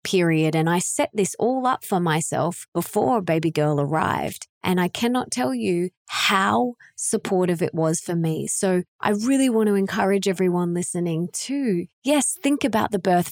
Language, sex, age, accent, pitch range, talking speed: English, female, 20-39, Australian, 170-215 Hz, 170 wpm